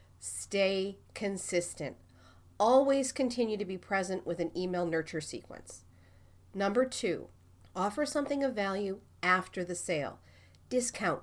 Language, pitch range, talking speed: English, 165-260 Hz, 120 wpm